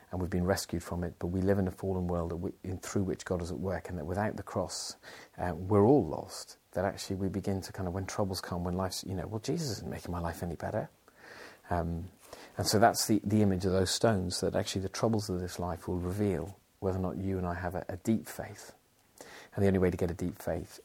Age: 40-59